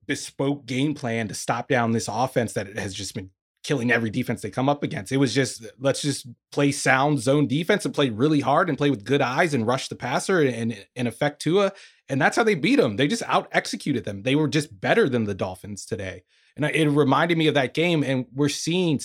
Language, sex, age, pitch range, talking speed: English, male, 20-39, 120-165 Hz, 230 wpm